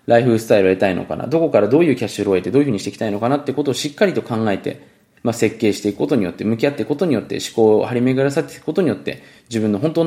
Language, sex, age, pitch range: Japanese, male, 20-39, 105-145 Hz